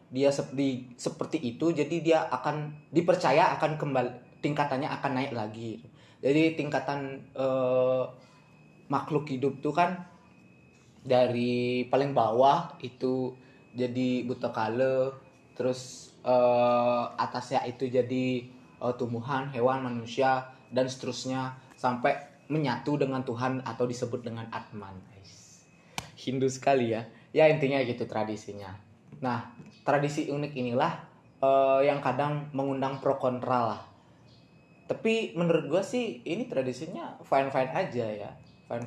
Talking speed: 115 wpm